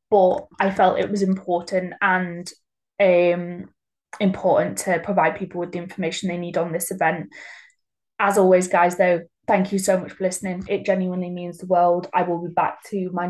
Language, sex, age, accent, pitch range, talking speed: English, female, 20-39, British, 180-195 Hz, 185 wpm